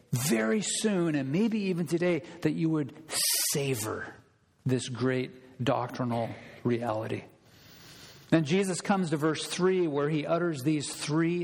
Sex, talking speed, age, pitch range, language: male, 130 wpm, 50-69, 125-165 Hz, English